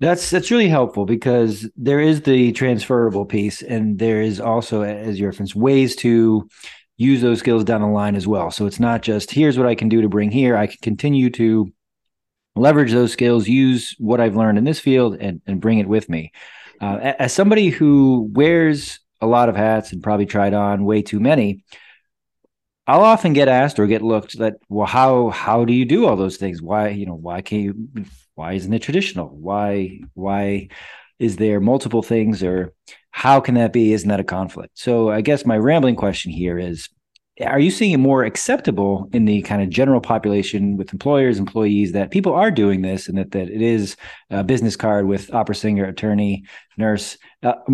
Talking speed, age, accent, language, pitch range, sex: 200 wpm, 30-49, American, English, 100-120 Hz, male